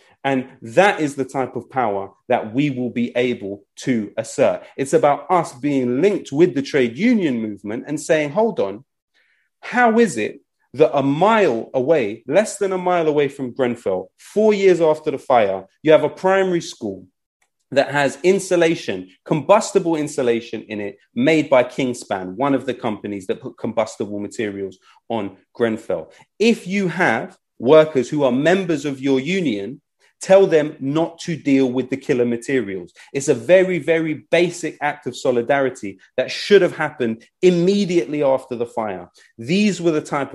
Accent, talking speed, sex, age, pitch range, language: British, 165 wpm, male, 30-49, 125-175 Hz, English